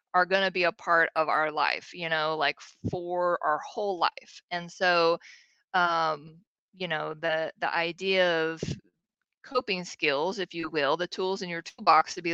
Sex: female